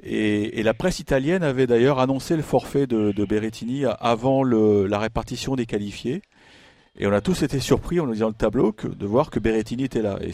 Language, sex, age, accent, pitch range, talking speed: French, male, 40-59, French, 110-150 Hz, 220 wpm